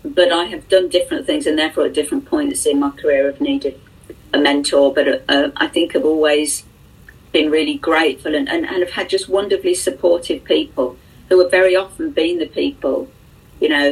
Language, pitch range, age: English, 145-195 Hz, 40-59